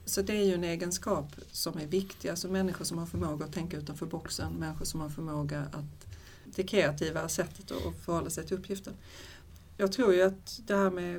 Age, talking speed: 40-59, 205 wpm